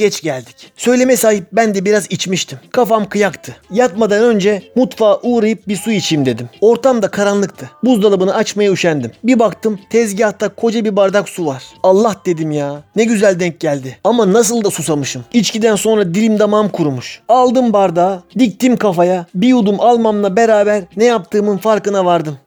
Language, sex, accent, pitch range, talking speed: Turkish, male, native, 180-225 Hz, 160 wpm